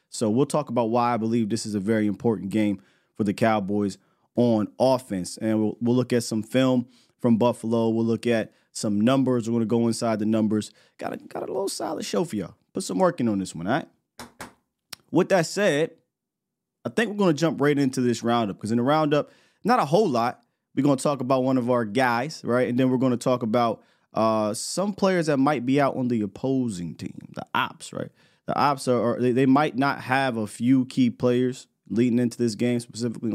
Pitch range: 110-135 Hz